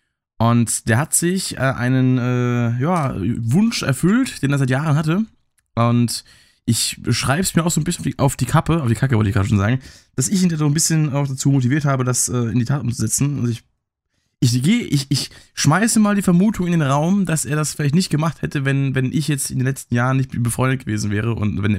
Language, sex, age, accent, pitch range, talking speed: German, male, 20-39, German, 115-150 Hz, 230 wpm